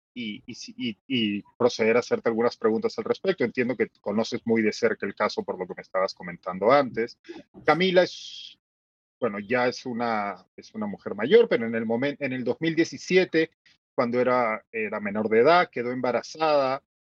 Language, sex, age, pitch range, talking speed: Spanish, male, 40-59, 110-175 Hz, 175 wpm